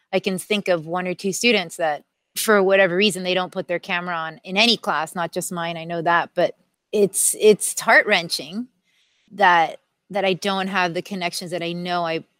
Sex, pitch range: female, 170-210 Hz